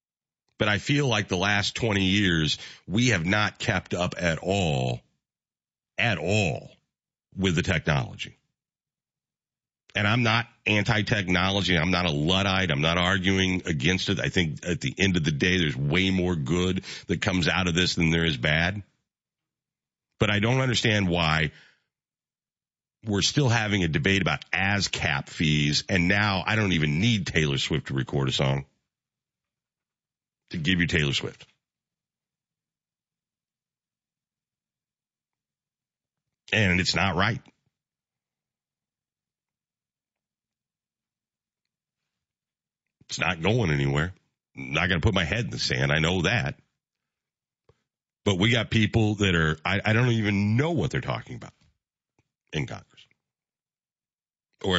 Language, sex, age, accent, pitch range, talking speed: English, male, 50-69, American, 90-115 Hz, 135 wpm